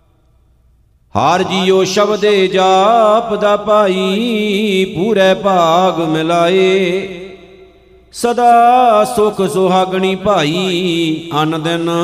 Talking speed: 70 wpm